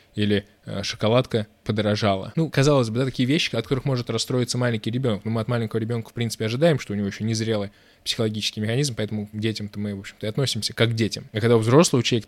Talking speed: 235 wpm